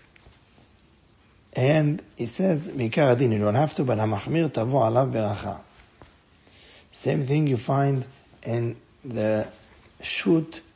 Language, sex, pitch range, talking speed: English, male, 110-140 Hz, 90 wpm